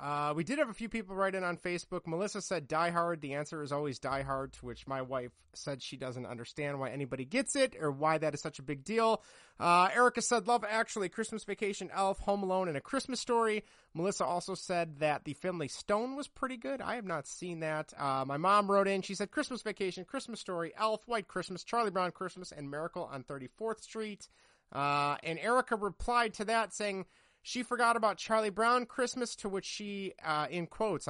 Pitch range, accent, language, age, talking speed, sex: 140-215 Hz, American, English, 30-49, 215 wpm, male